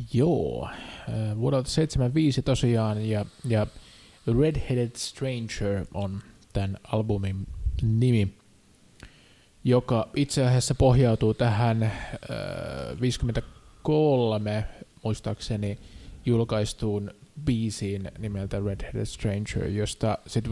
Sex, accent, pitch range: male, native, 100-120 Hz